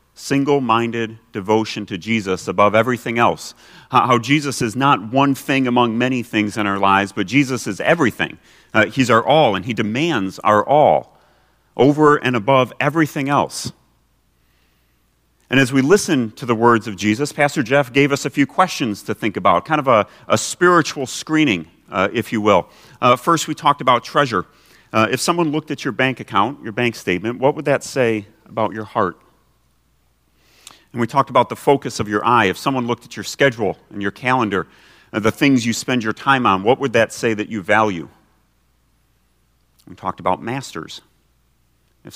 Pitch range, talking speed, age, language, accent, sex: 90-130 Hz, 180 wpm, 40-59, English, American, male